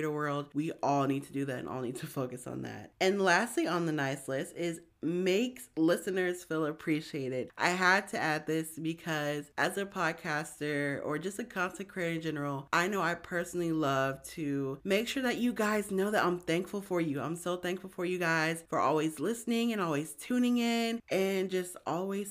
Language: English